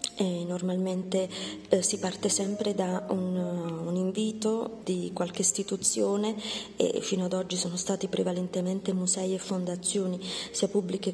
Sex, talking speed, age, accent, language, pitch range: female, 130 wpm, 30-49, native, Italian, 185-210 Hz